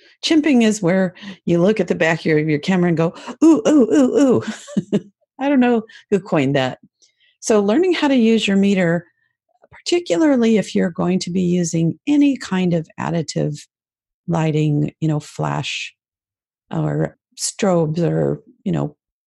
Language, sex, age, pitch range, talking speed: English, female, 50-69, 155-220 Hz, 155 wpm